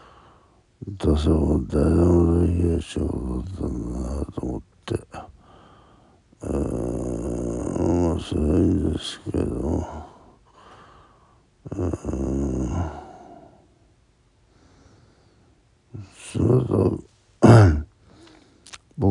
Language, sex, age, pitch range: Japanese, male, 60-79, 80-105 Hz